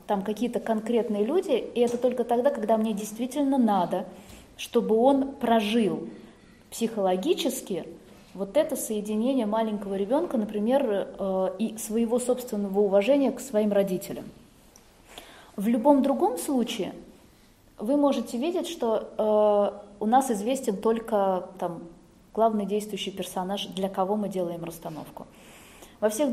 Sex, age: female, 20-39